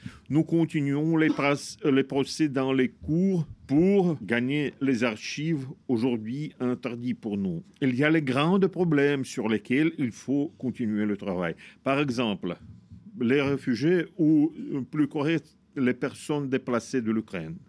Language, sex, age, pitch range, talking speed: French, male, 50-69, 125-165 Hz, 140 wpm